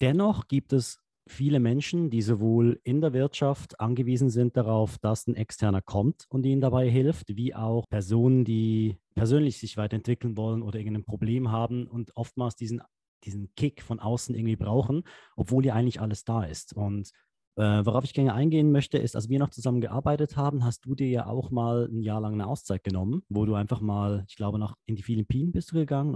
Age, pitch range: 30-49, 110-130 Hz